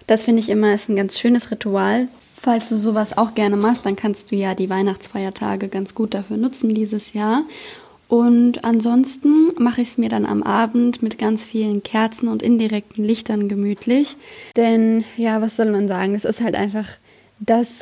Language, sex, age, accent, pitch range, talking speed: German, female, 20-39, German, 200-230 Hz, 185 wpm